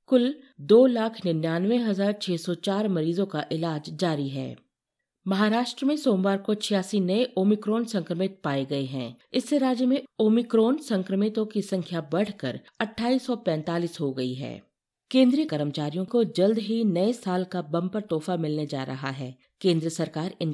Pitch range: 160-215 Hz